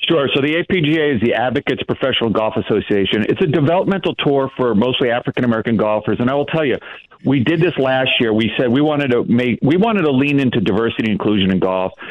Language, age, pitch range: English, 50-69, 110-145 Hz